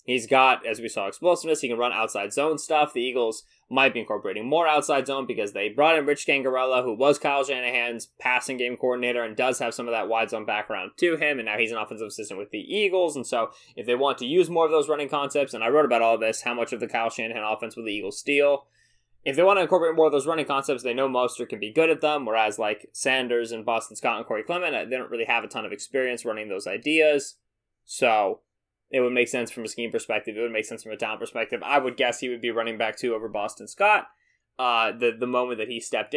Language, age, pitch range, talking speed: English, 20-39, 115-150 Hz, 260 wpm